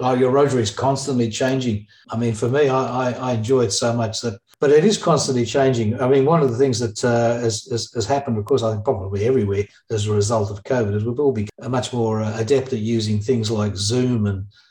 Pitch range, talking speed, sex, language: 110-130 Hz, 240 wpm, male, English